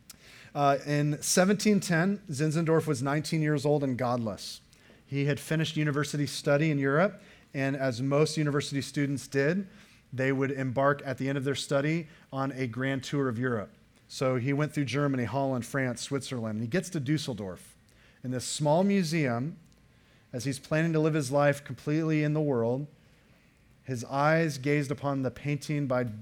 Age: 30-49